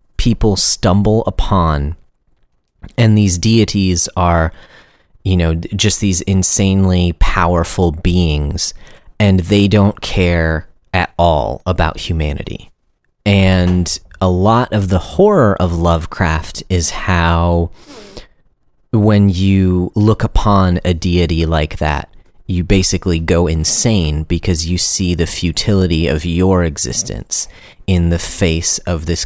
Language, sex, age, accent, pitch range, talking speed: English, male, 30-49, American, 85-100 Hz, 115 wpm